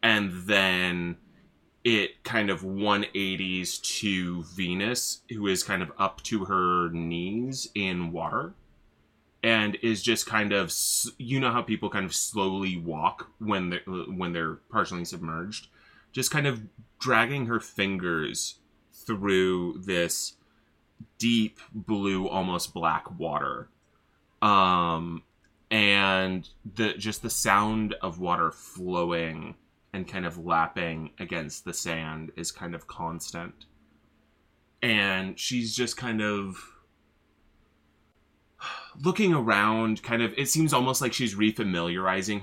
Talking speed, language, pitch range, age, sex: 120 wpm, English, 80-110 Hz, 20-39, male